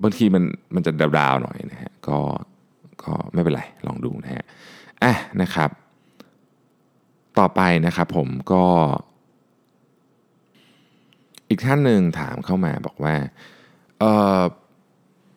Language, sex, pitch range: Thai, male, 75-95 Hz